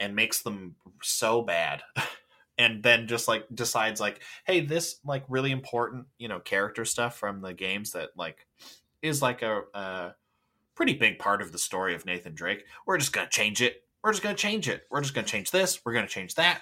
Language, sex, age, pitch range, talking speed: English, male, 20-39, 100-140 Hz, 220 wpm